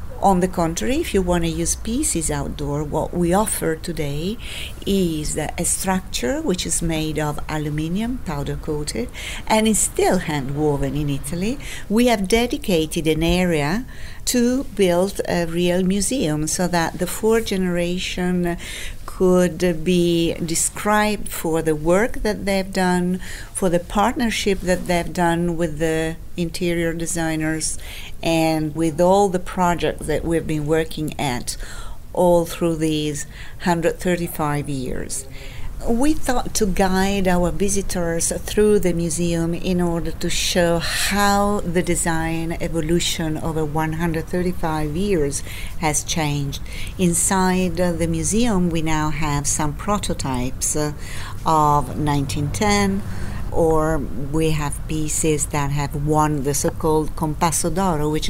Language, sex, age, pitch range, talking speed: English, female, 50-69, 155-185 Hz, 130 wpm